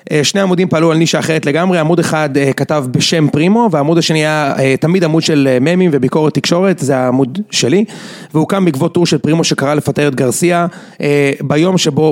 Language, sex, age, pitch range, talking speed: Hebrew, male, 30-49, 140-175 Hz, 175 wpm